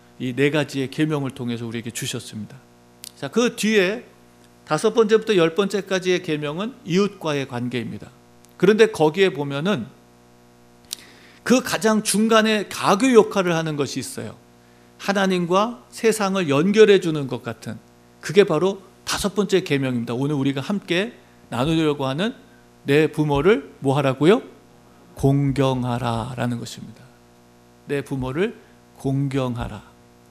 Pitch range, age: 120-195 Hz, 50-69